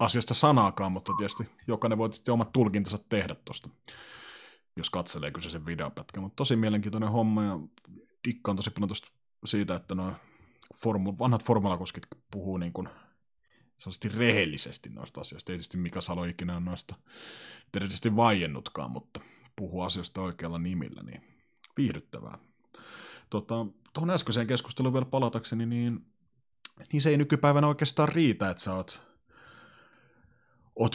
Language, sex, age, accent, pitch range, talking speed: Finnish, male, 30-49, native, 95-125 Hz, 130 wpm